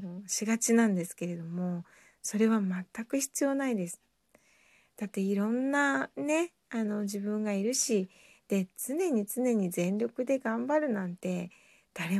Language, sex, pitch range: Japanese, female, 195-265 Hz